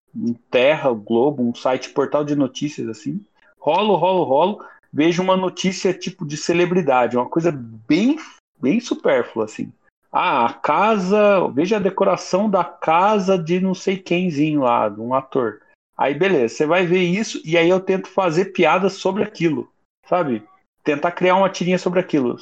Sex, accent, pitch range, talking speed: male, Brazilian, 145-185 Hz, 160 wpm